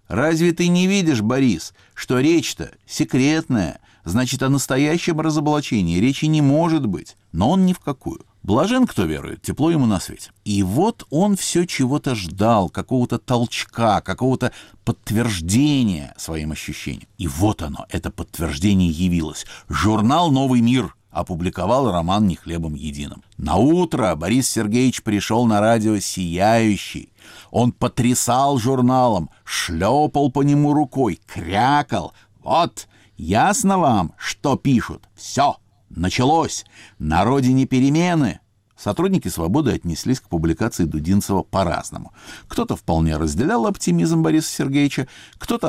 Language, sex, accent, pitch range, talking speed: Russian, male, native, 95-145 Hz, 125 wpm